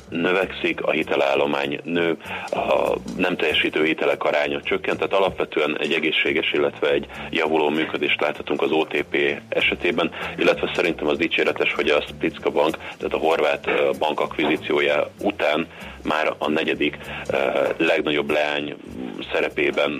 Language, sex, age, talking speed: Hungarian, male, 30-49, 125 wpm